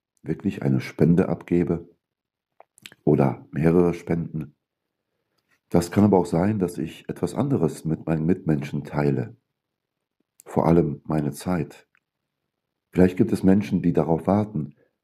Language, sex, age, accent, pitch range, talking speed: German, male, 60-79, German, 75-95 Hz, 125 wpm